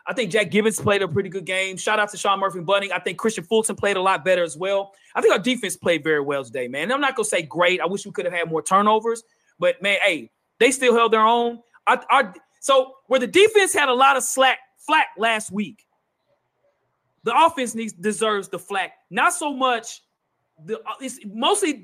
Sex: male